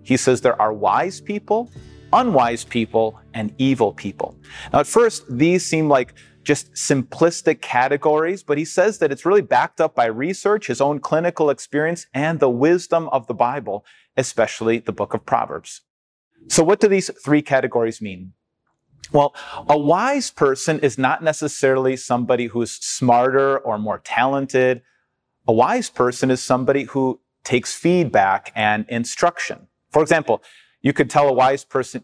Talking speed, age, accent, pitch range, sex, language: 155 wpm, 40-59, American, 120-155 Hz, male, English